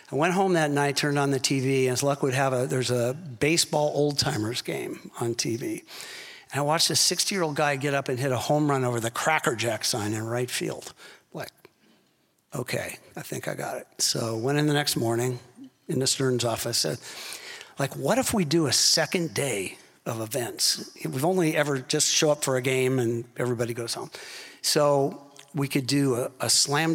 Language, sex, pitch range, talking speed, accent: English, male, 125-155 Hz, 205 wpm, American